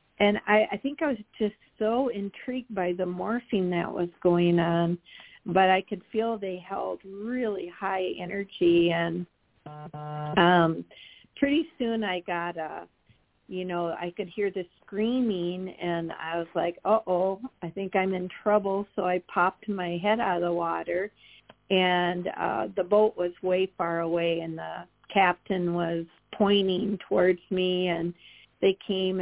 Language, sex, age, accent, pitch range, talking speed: English, female, 50-69, American, 175-195 Hz, 160 wpm